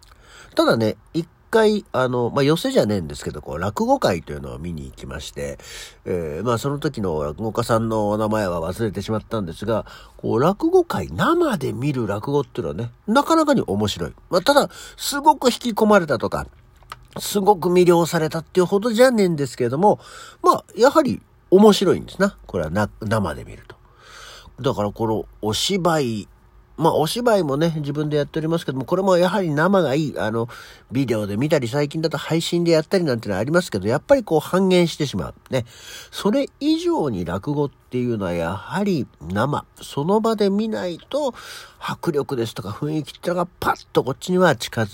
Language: Japanese